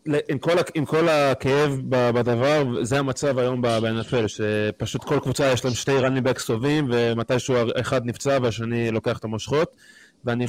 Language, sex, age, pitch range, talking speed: Hebrew, male, 20-39, 115-140 Hz, 145 wpm